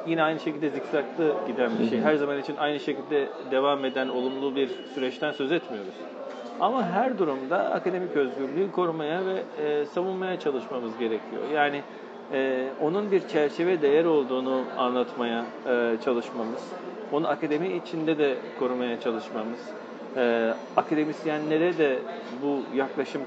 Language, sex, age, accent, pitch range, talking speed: Turkish, male, 40-59, native, 130-155 Hz, 120 wpm